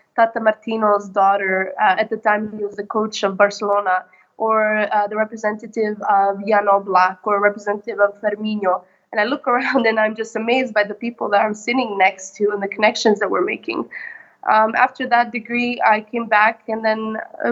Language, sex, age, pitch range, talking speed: English, female, 20-39, 205-235 Hz, 195 wpm